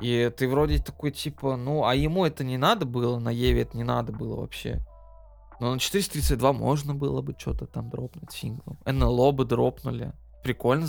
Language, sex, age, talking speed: Russian, male, 20-39, 185 wpm